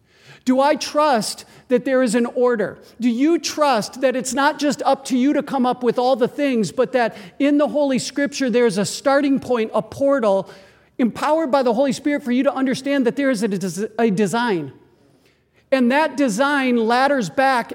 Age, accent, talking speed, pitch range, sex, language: 50-69, American, 195 wpm, 235-270 Hz, male, English